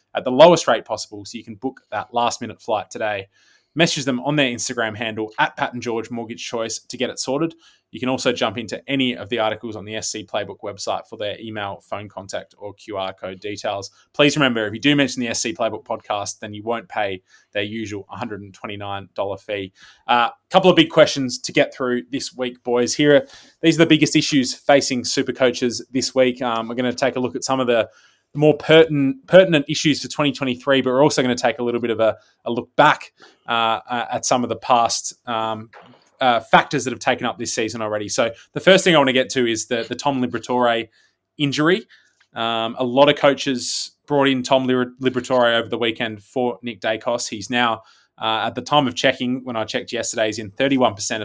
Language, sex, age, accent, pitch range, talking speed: English, male, 20-39, Australian, 110-135 Hz, 215 wpm